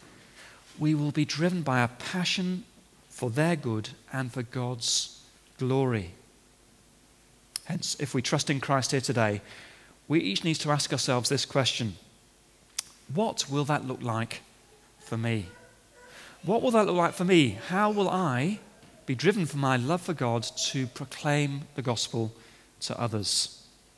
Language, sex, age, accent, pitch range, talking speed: English, male, 30-49, British, 120-160 Hz, 150 wpm